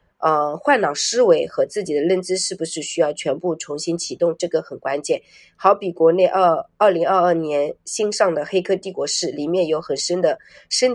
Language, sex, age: Chinese, female, 30-49